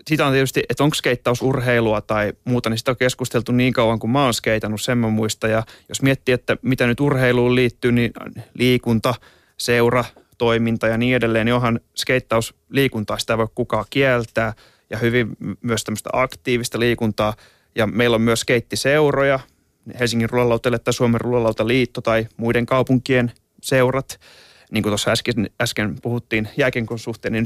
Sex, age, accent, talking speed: male, 30-49, native, 150 wpm